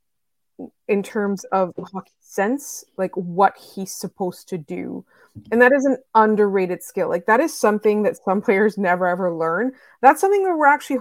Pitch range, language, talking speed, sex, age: 180-220 Hz, English, 175 wpm, female, 20-39